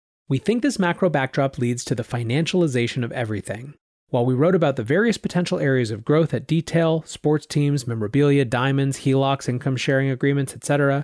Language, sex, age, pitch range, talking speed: English, male, 30-49, 120-155 Hz, 175 wpm